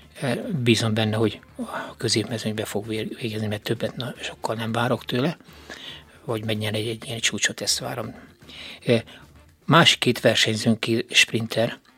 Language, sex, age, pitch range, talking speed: Hungarian, male, 60-79, 110-125 Hz, 120 wpm